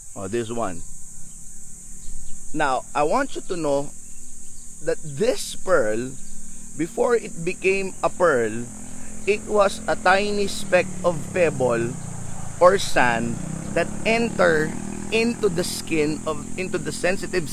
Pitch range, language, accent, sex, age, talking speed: 135-195 Hz, Filipino, native, male, 30-49, 120 wpm